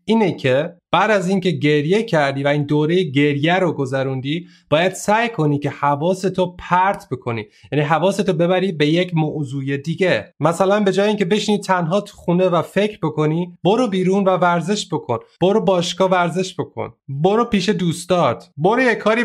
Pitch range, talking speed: 150-200 Hz, 165 wpm